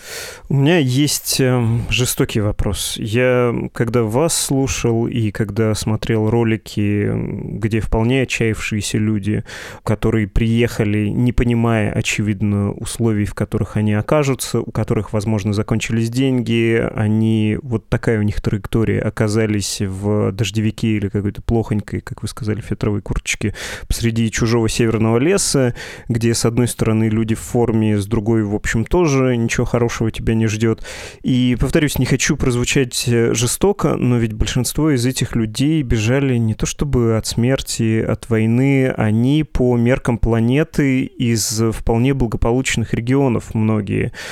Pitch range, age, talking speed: 110-125 Hz, 20-39, 135 wpm